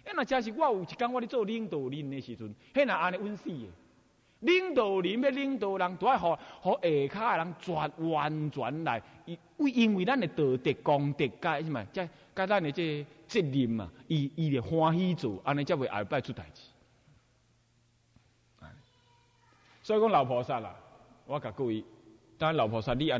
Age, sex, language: 30-49, male, Chinese